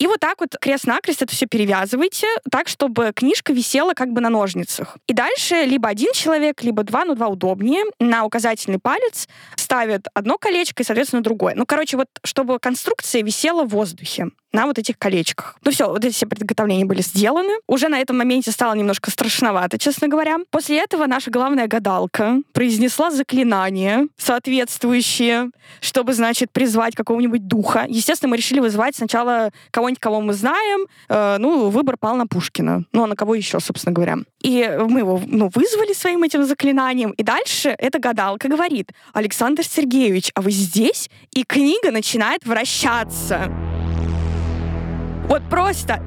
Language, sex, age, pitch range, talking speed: Russian, female, 20-39, 215-280 Hz, 160 wpm